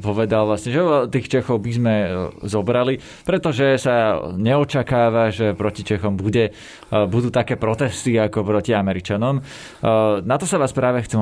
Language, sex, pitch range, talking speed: Slovak, male, 105-125 Hz, 145 wpm